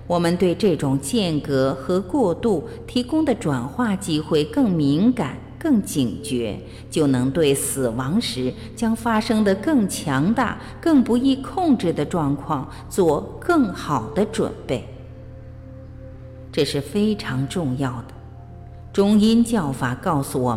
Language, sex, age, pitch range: Chinese, female, 50-69, 130-205 Hz